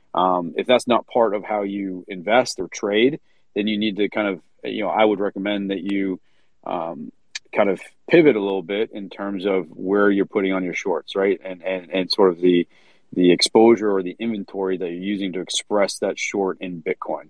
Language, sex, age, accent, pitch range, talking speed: English, male, 30-49, American, 90-105 Hz, 210 wpm